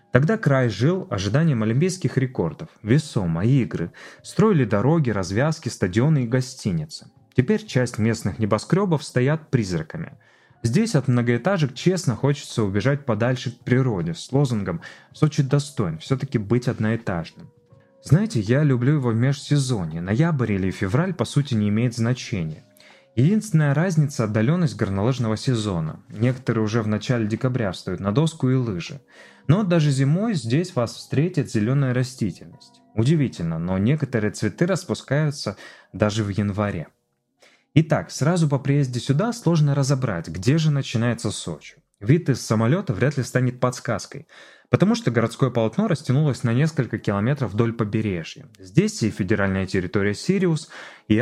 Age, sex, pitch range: 20-39, male, 110-150 Hz